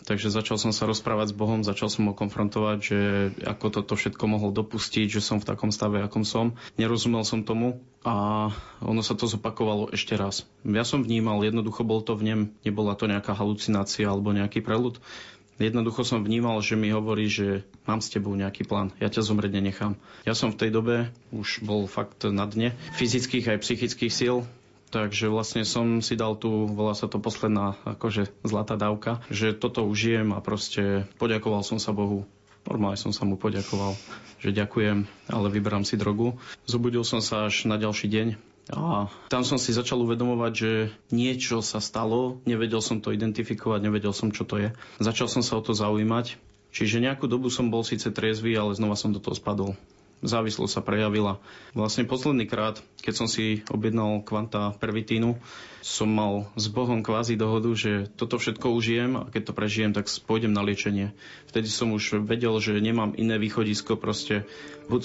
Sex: male